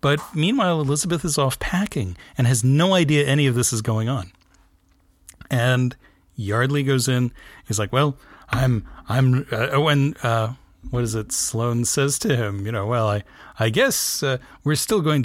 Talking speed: 175 wpm